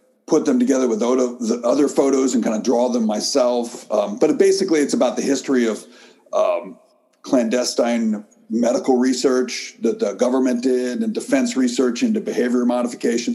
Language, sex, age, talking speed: English, male, 40-59, 160 wpm